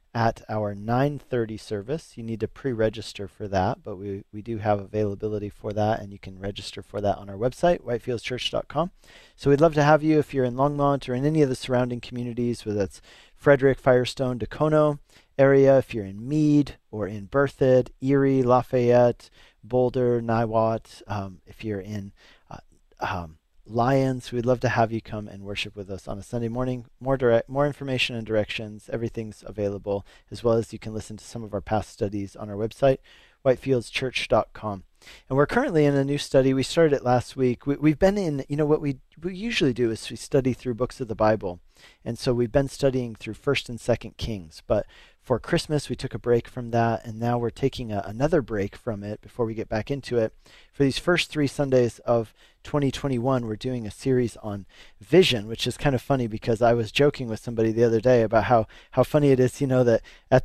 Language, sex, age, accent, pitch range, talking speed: English, male, 40-59, American, 110-135 Hz, 205 wpm